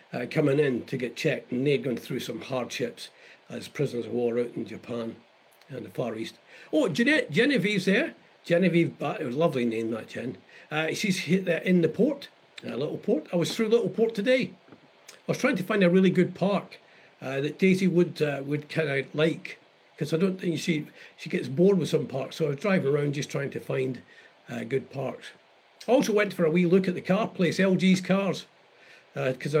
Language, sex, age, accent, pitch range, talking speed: English, male, 50-69, British, 145-200 Hz, 215 wpm